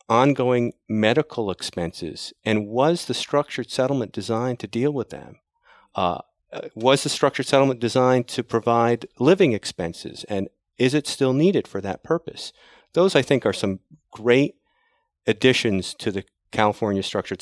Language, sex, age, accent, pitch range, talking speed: English, male, 40-59, American, 95-125 Hz, 145 wpm